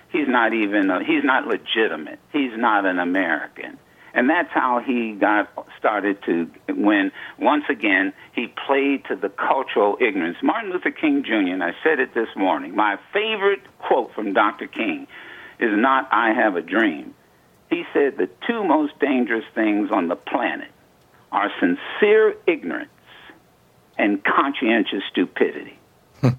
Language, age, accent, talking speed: English, 60-79, American, 150 wpm